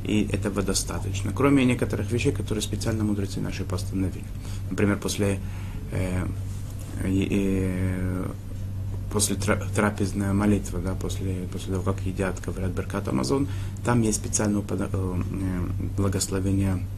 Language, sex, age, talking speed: Russian, male, 30-49, 115 wpm